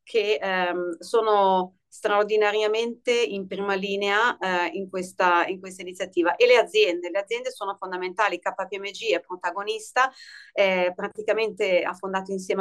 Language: Italian